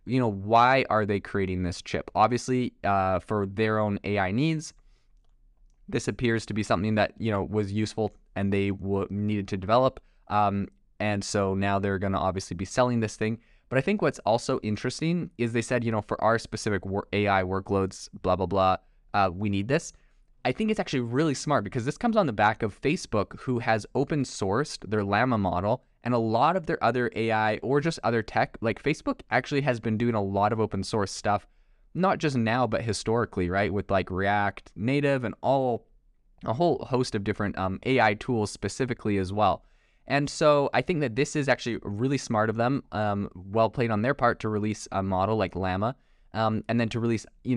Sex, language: male, English